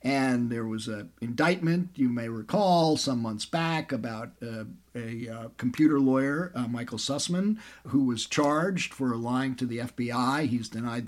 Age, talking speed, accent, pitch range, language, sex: 50-69, 160 wpm, American, 125-180 Hz, English, male